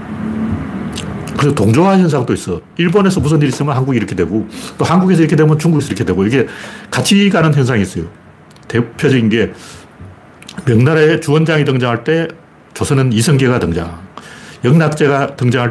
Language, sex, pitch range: Korean, male, 105-160 Hz